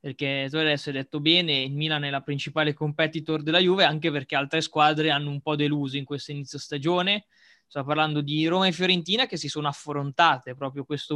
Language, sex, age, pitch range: Italian, male, 20-39, 145-165 Hz